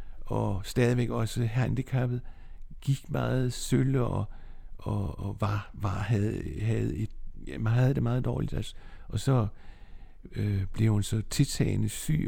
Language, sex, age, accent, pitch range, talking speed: Danish, male, 60-79, native, 95-130 Hz, 130 wpm